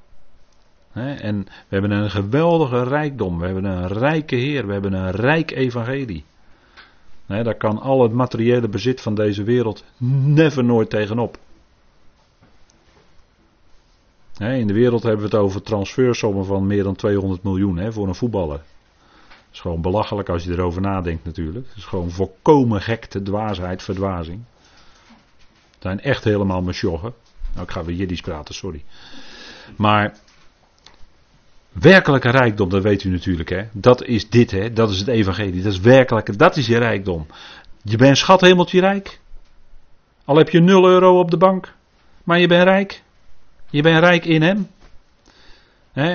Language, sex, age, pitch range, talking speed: Dutch, male, 40-59, 100-145 Hz, 155 wpm